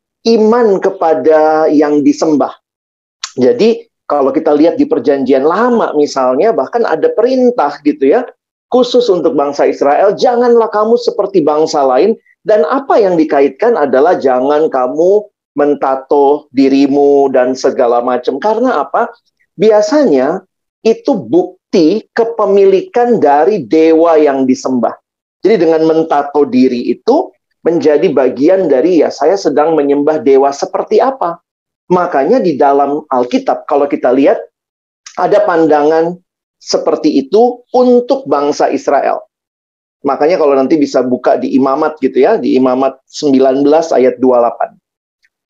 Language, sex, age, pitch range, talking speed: Indonesian, male, 40-59, 140-215 Hz, 120 wpm